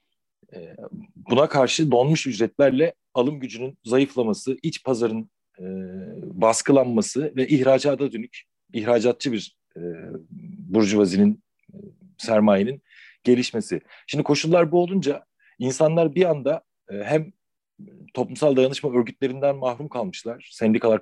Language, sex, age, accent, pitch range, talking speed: Turkish, male, 40-59, native, 105-155 Hz, 95 wpm